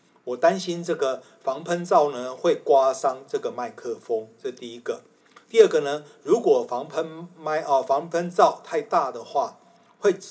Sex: male